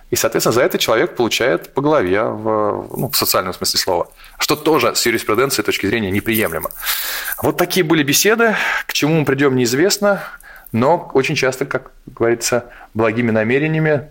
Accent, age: native, 20-39